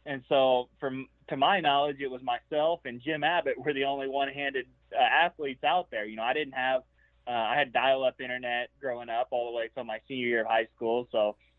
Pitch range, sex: 110-130 Hz, male